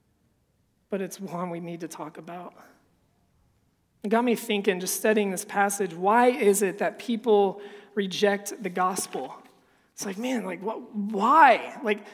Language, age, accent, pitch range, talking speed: English, 20-39, American, 195-225 Hz, 155 wpm